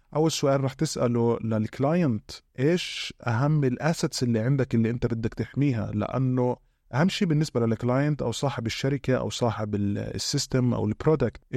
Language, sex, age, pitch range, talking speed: Arabic, male, 20-39, 115-135 Hz, 140 wpm